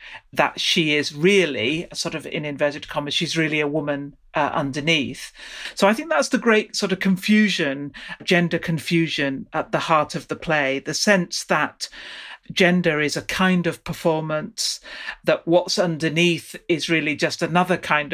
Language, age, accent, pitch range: English, 40-59, British, 155-200 Hz